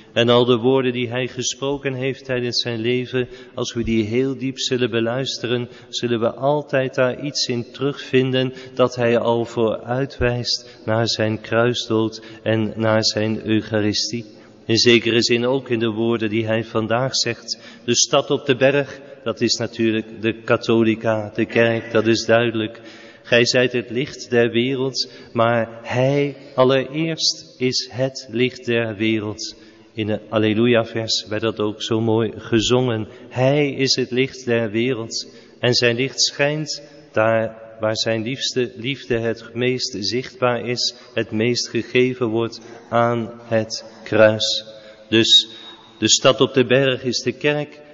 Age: 40-59